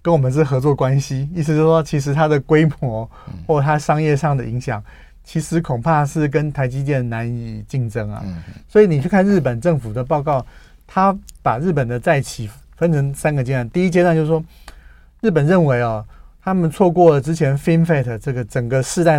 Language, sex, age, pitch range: Chinese, male, 30-49, 120-160 Hz